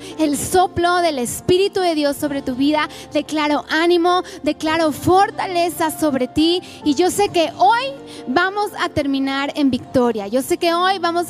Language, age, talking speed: Spanish, 20-39, 160 wpm